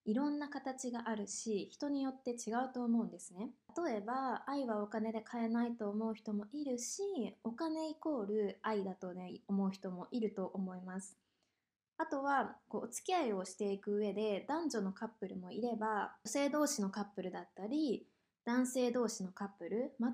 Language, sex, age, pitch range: Japanese, female, 20-39, 200-265 Hz